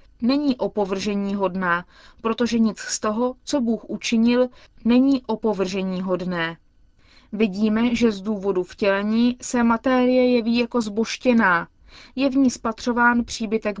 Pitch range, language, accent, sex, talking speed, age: 200-245 Hz, Czech, native, female, 125 wpm, 20-39